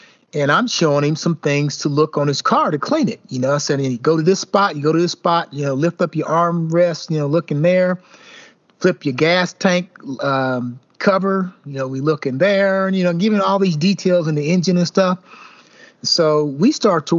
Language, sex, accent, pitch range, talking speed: English, male, American, 160-210 Hz, 235 wpm